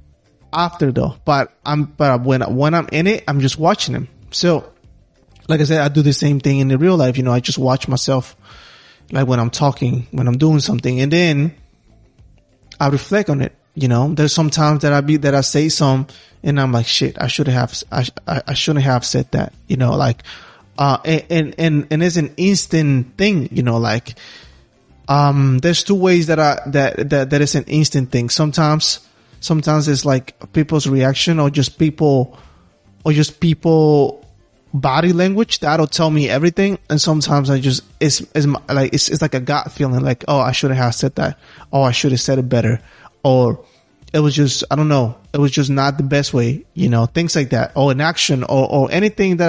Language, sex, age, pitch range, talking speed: English, male, 20-39, 130-155 Hz, 205 wpm